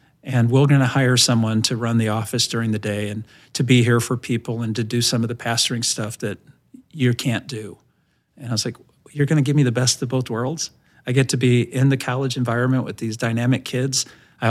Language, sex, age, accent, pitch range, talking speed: English, male, 40-59, American, 115-130 Hz, 240 wpm